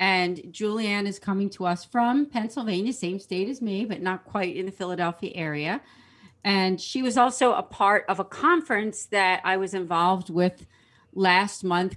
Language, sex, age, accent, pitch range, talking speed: English, female, 40-59, American, 175-210 Hz, 175 wpm